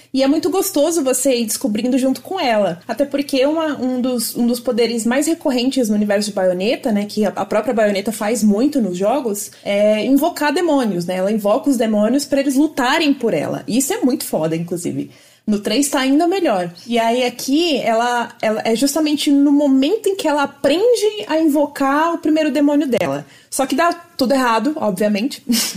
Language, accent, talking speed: Portuguese, Brazilian, 190 wpm